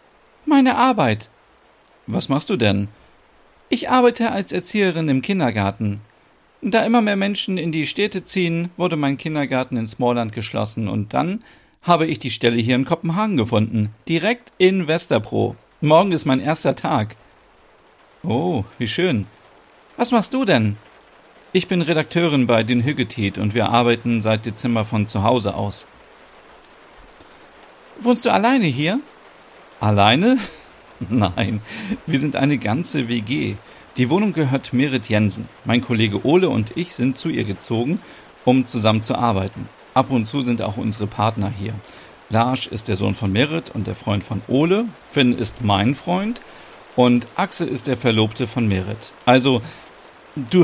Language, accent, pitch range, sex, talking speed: German, German, 110-160 Hz, male, 150 wpm